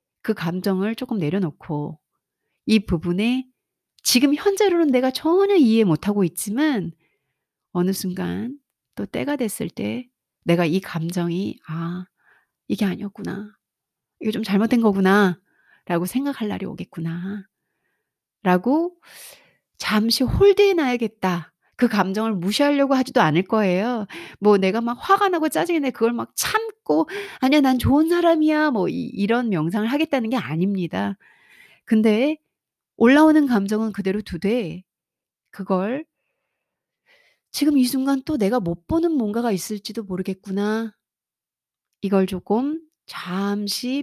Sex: female